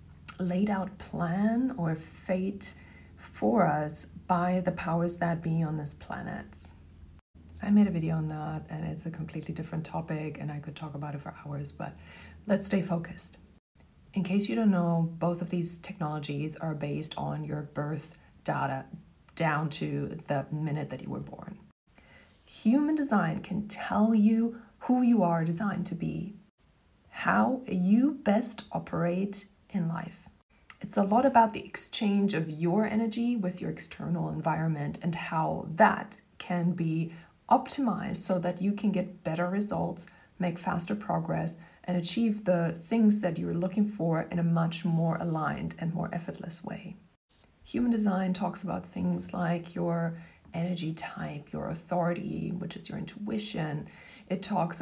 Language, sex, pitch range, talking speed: English, female, 160-195 Hz, 155 wpm